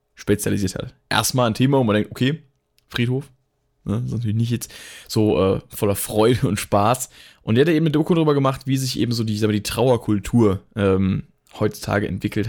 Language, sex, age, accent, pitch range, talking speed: German, male, 20-39, German, 100-120 Hz, 205 wpm